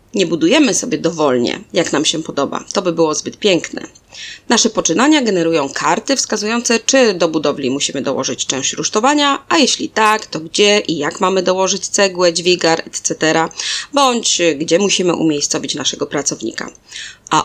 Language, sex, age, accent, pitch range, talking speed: Polish, female, 20-39, native, 160-255 Hz, 150 wpm